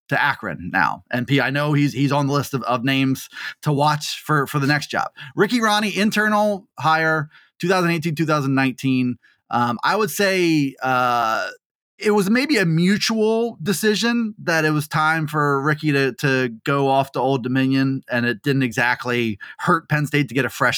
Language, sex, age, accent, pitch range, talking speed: English, male, 20-39, American, 135-175 Hz, 180 wpm